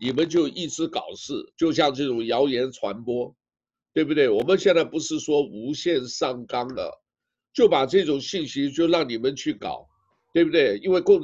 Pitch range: 125-195 Hz